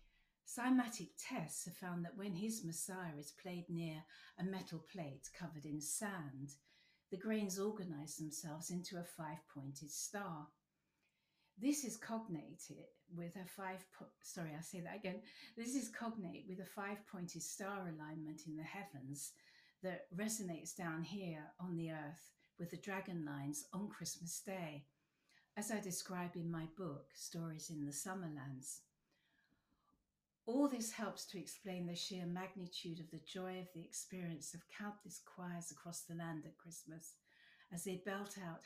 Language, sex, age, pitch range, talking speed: English, female, 60-79, 160-195 Hz, 155 wpm